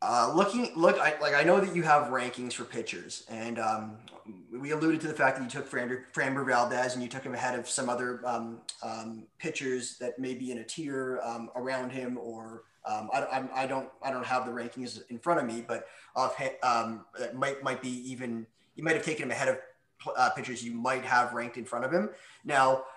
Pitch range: 120-140 Hz